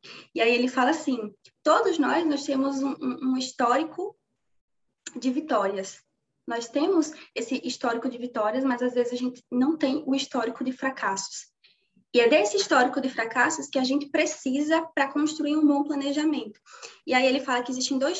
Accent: Brazilian